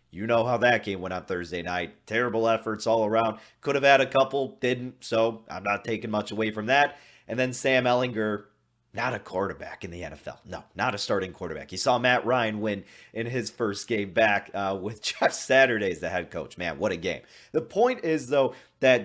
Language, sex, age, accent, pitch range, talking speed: English, male, 30-49, American, 100-135 Hz, 215 wpm